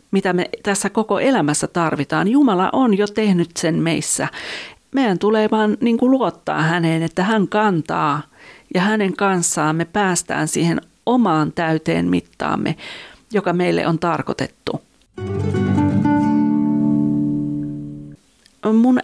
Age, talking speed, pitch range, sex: 40-59, 105 wpm, 155-205 Hz, female